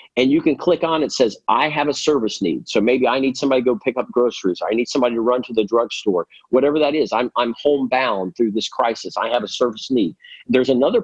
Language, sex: English, male